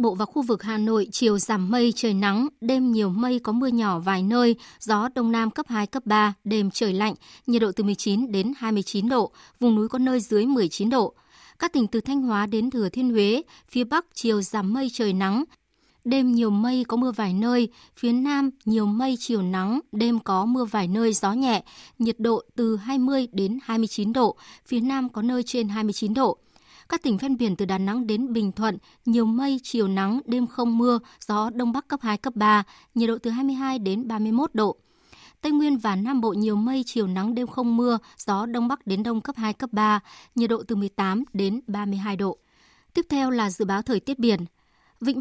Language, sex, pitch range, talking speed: Vietnamese, male, 210-250 Hz, 215 wpm